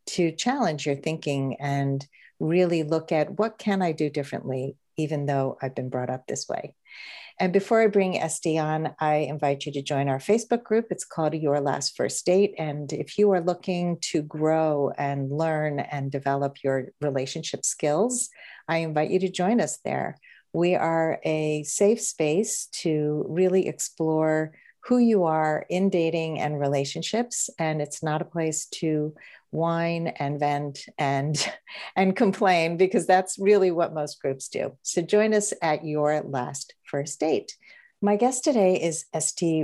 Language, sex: English, female